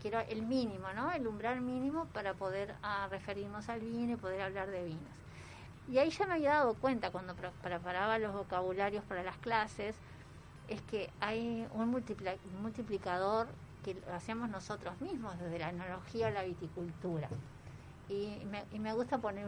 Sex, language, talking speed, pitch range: female, Spanish, 170 wpm, 180-230 Hz